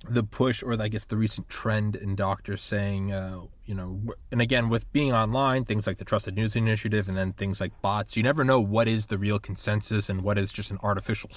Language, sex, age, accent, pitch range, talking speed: English, male, 20-39, American, 100-125 Hz, 230 wpm